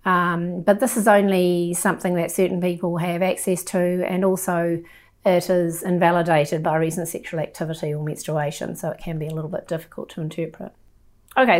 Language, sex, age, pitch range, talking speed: English, female, 40-59, 175-205 Hz, 175 wpm